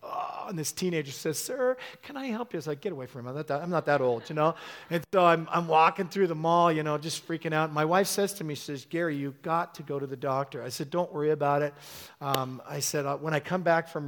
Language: English